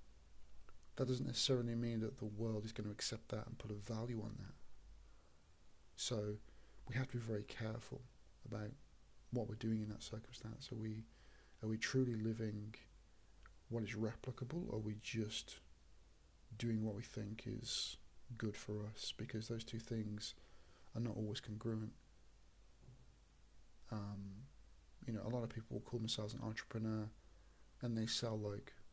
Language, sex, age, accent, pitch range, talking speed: English, male, 40-59, British, 100-115 Hz, 160 wpm